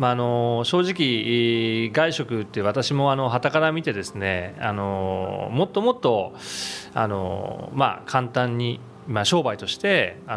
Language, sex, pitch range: Japanese, male, 100-140 Hz